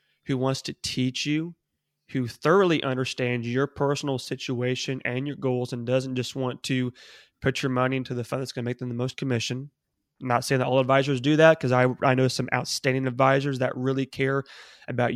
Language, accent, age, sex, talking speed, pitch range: English, American, 20-39, male, 205 wpm, 125-145 Hz